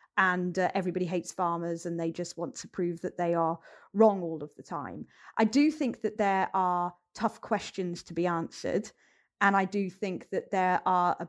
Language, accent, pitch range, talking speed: English, British, 180-240 Hz, 200 wpm